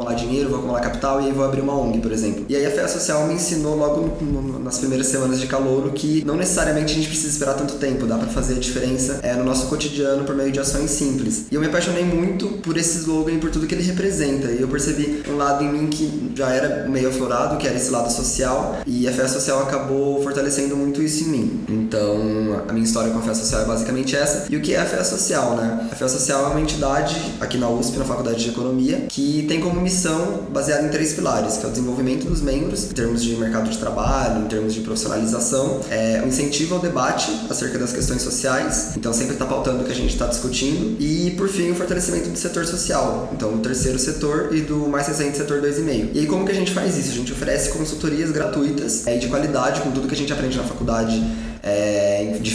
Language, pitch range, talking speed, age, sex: Portuguese, 120-150 Hz, 240 wpm, 20-39, male